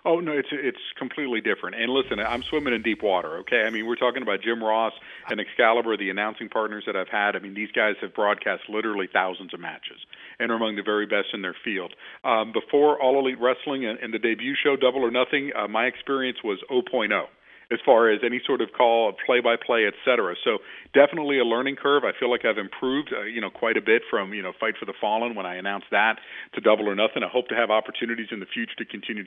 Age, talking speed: 50-69, 240 wpm